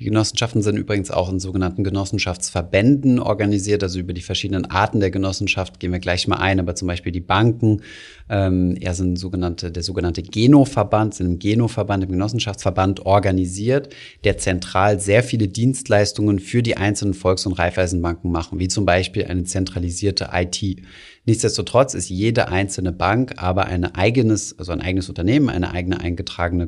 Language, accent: German, German